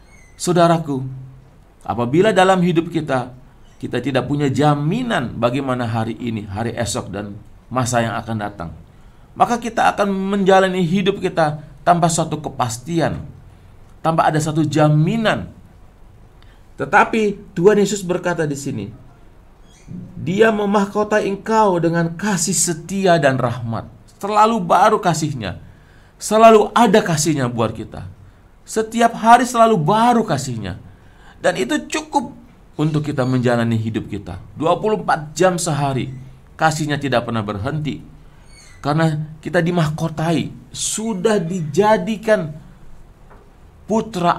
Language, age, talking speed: English, 40-59, 110 wpm